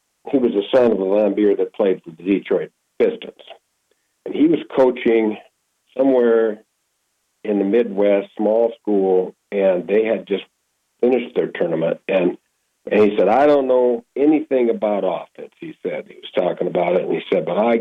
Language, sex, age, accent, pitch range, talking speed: English, male, 50-69, American, 105-135 Hz, 175 wpm